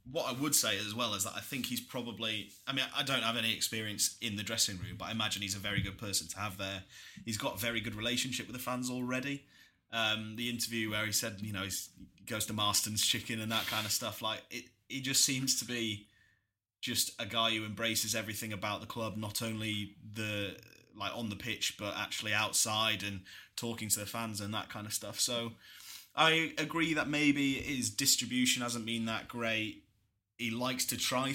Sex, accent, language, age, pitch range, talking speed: male, British, English, 20-39, 105-120 Hz, 220 wpm